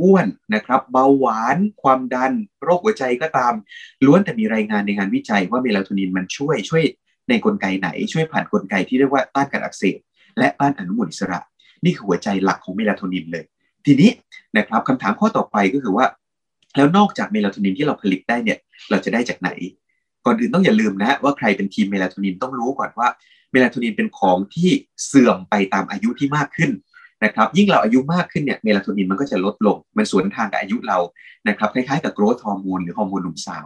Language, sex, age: Thai, male, 20-39